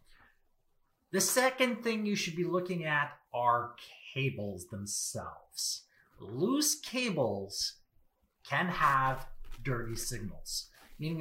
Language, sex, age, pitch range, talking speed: English, male, 30-49, 120-195 Hz, 95 wpm